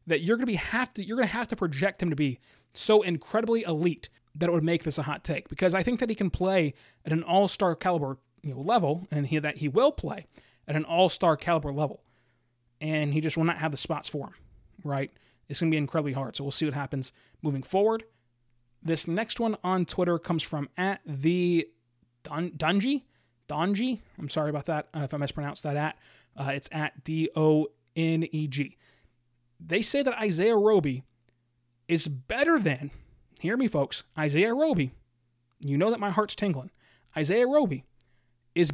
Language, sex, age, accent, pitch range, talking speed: English, male, 20-39, American, 135-180 Hz, 200 wpm